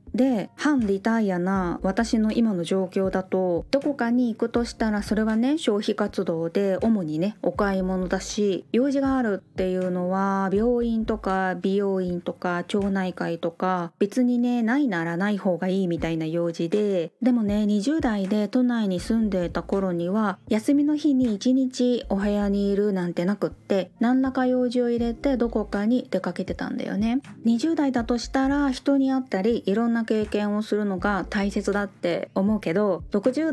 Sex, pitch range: female, 185-245 Hz